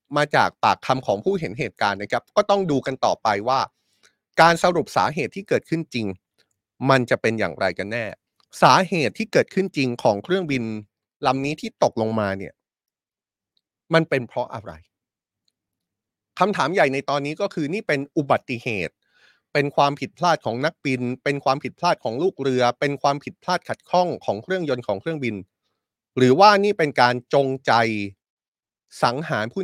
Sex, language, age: male, Thai, 30-49